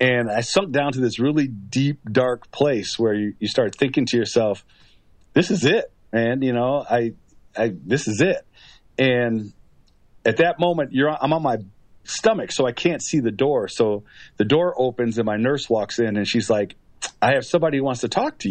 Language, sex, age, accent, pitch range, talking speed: English, male, 40-59, American, 110-145 Hz, 210 wpm